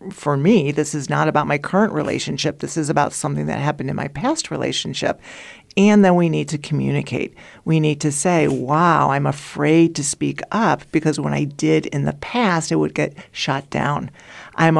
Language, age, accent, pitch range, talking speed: English, 50-69, American, 150-190 Hz, 195 wpm